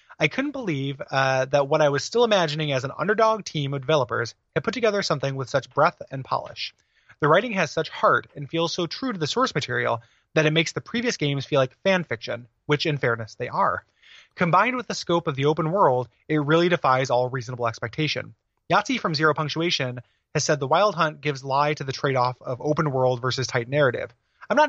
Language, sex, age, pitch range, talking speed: English, male, 30-49, 130-170 Hz, 215 wpm